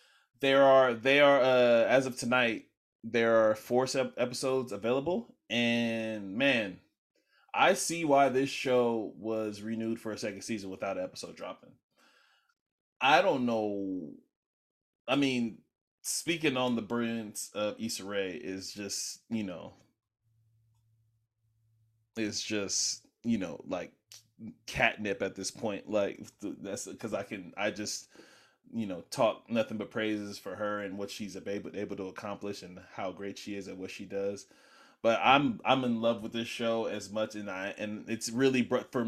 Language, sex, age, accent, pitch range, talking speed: English, male, 20-39, American, 105-125 Hz, 155 wpm